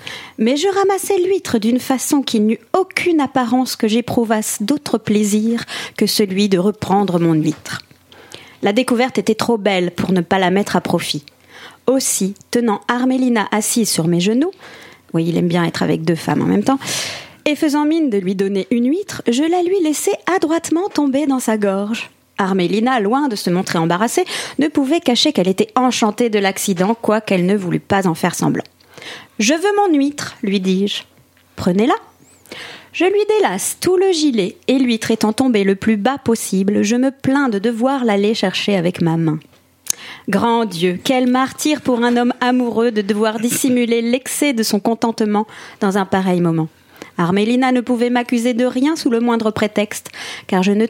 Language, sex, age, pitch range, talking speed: French, female, 40-59, 200-260 Hz, 180 wpm